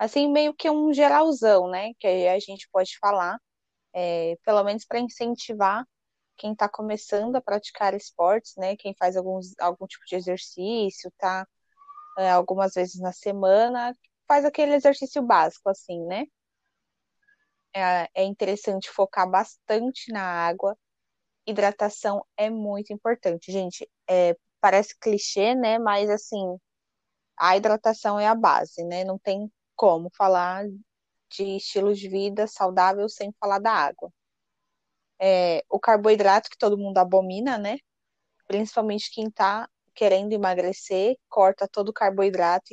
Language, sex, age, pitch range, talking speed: Portuguese, female, 20-39, 190-225 Hz, 135 wpm